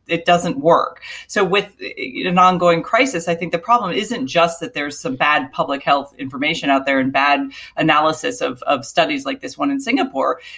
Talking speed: 195 wpm